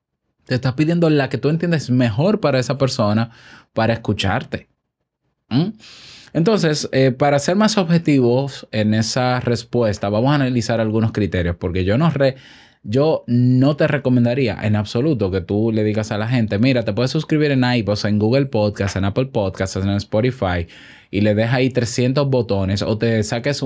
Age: 10-29